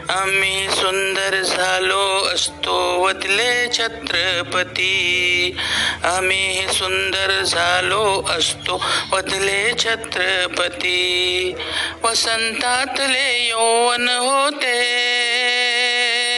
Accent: native